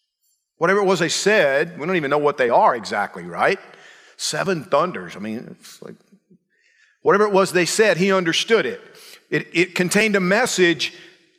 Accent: American